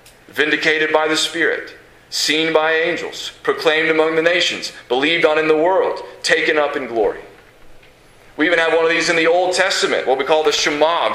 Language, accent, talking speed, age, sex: English, American, 195 wpm, 40-59, male